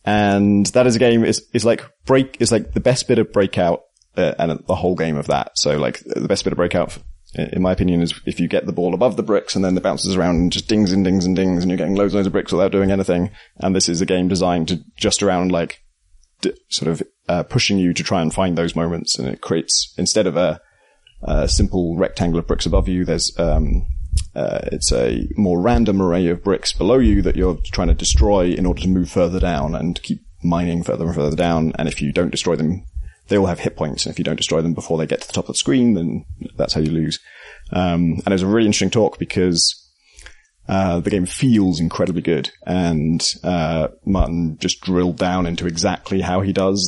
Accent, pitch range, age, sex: British, 85-100 Hz, 30-49, male